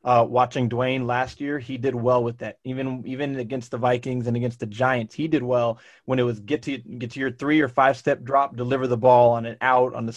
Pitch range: 115-130 Hz